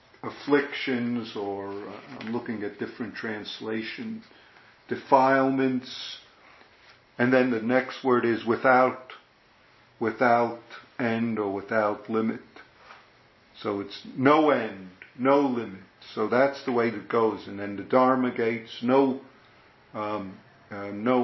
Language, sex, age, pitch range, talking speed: English, male, 50-69, 105-130 Hz, 115 wpm